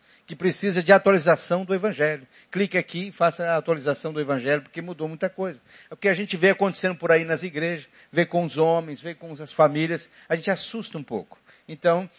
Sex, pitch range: male, 135-170 Hz